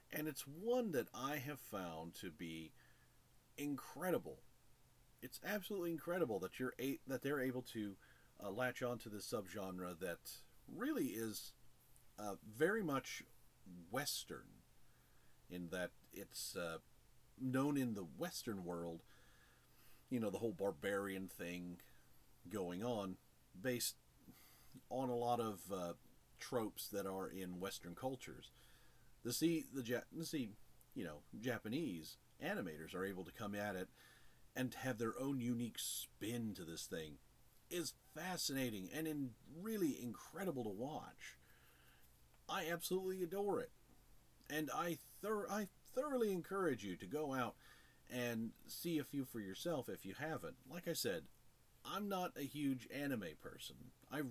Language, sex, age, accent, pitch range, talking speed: English, male, 40-59, American, 95-150 Hz, 140 wpm